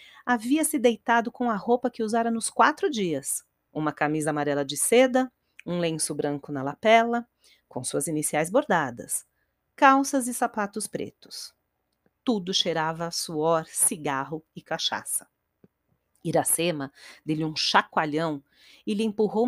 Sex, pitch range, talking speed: female, 160-245 Hz, 130 wpm